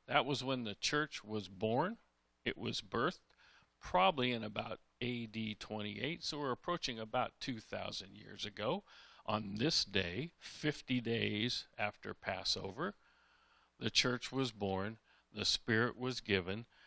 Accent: American